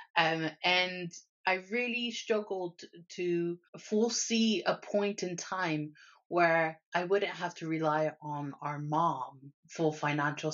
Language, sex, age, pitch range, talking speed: English, female, 30-49, 155-200 Hz, 125 wpm